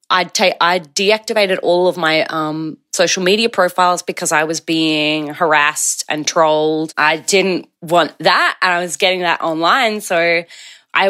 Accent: Australian